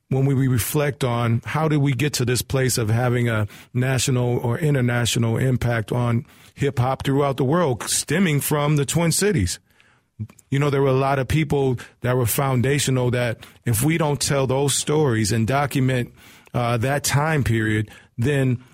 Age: 40-59